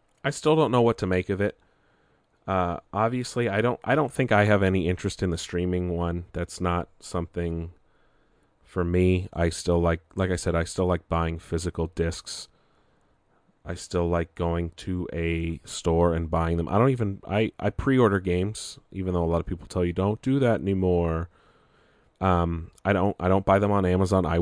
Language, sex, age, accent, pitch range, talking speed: English, male, 30-49, American, 85-100 Hz, 195 wpm